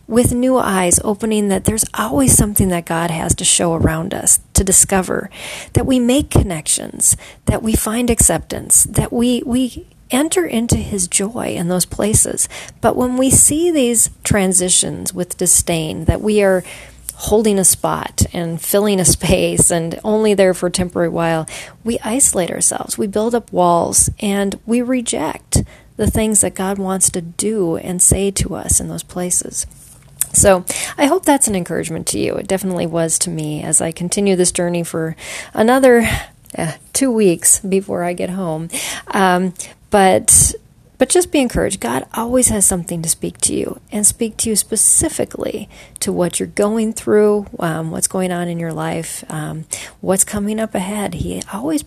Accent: American